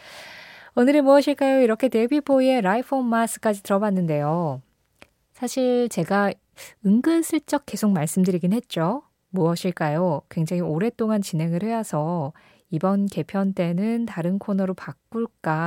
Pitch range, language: 170-230 Hz, Korean